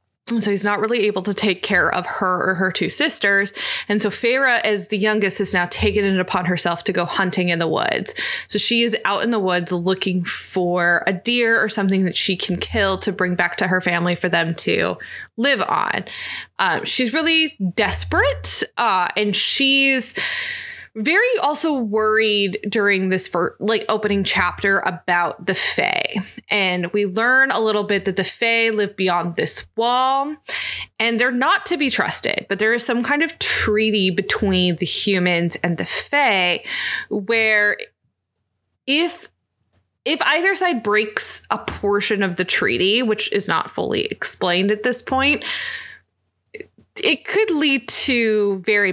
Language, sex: English, female